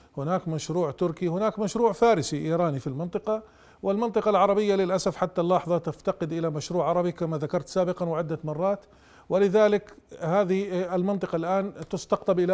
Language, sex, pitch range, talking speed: Arabic, male, 175-210 Hz, 140 wpm